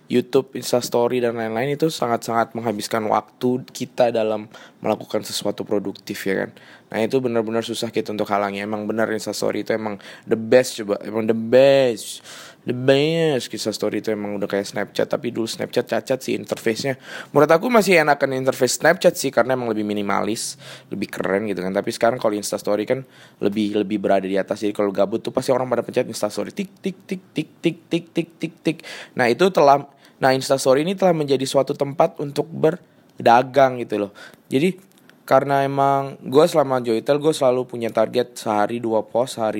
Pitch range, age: 110-140 Hz, 20-39